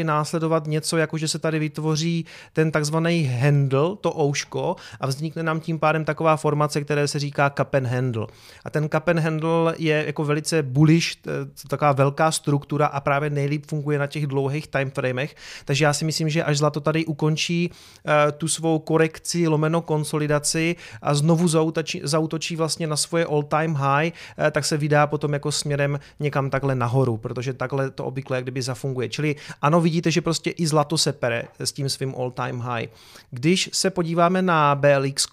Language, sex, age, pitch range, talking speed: Czech, male, 30-49, 135-155 Hz, 170 wpm